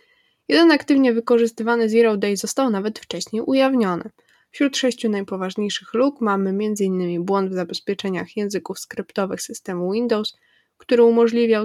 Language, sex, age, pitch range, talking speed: Polish, female, 10-29, 195-245 Hz, 125 wpm